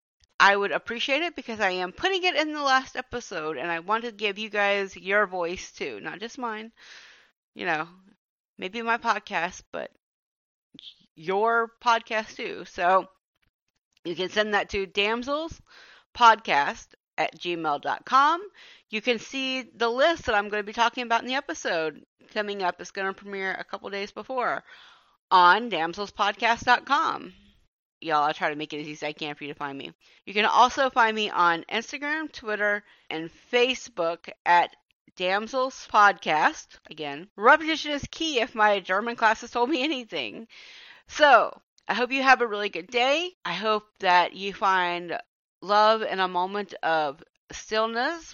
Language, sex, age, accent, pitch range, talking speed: English, female, 30-49, American, 180-245 Hz, 165 wpm